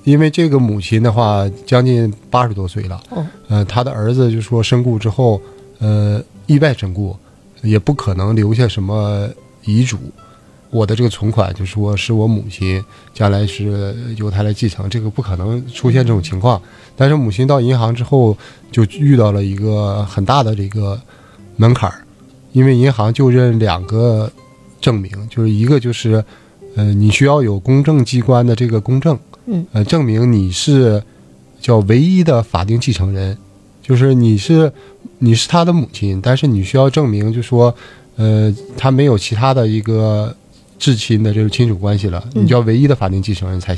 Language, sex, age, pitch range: Chinese, male, 20-39, 105-130 Hz